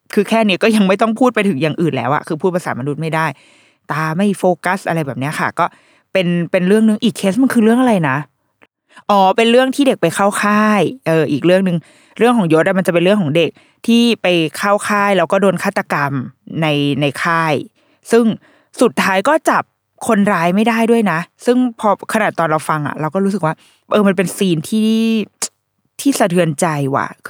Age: 20-39